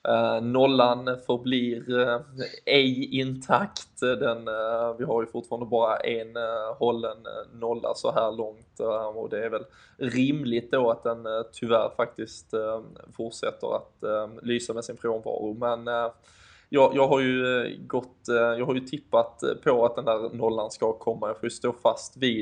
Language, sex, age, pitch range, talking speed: Swedish, male, 20-39, 115-120 Hz, 175 wpm